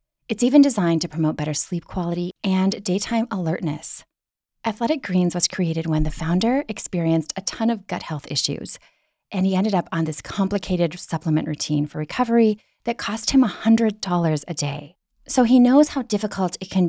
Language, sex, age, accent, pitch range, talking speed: English, female, 30-49, American, 165-215 Hz, 175 wpm